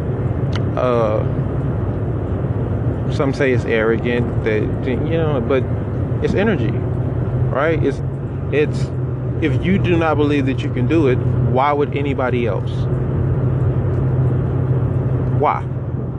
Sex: male